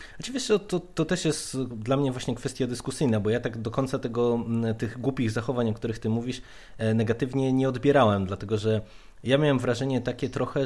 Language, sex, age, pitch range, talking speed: Polish, male, 20-39, 105-120 Hz, 185 wpm